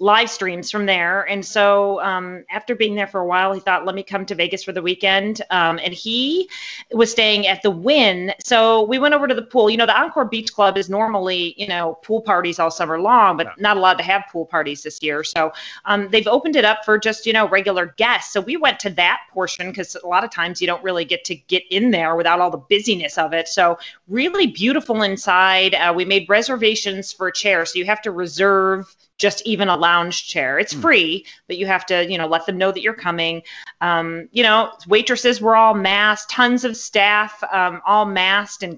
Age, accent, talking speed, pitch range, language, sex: 30-49, American, 230 wpm, 180-220 Hz, English, female